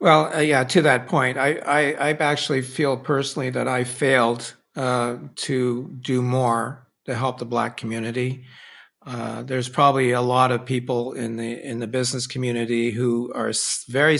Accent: American